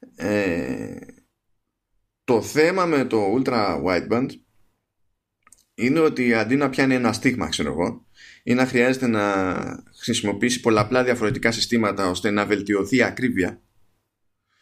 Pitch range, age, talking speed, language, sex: 105-140 Hz, 20-39, 120 wpm, Greek, male